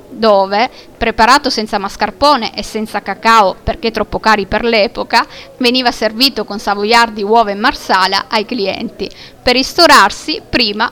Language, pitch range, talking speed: Italian, 205-265 Hz, 130 wpm